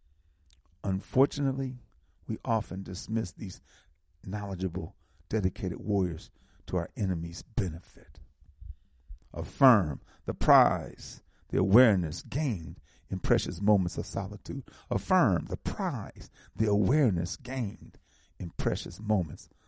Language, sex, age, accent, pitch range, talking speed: English, male, 50-69, American, 75-125 Hz, 100 wpm